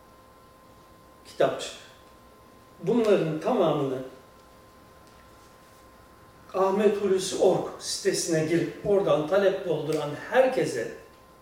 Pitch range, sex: 155-200 Hz, male